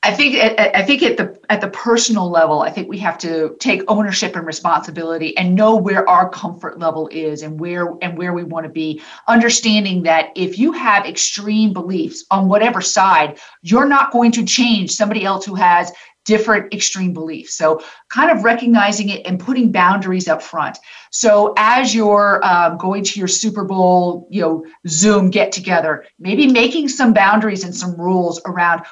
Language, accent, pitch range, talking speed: English, American, 180-230 Hz, 185 wpm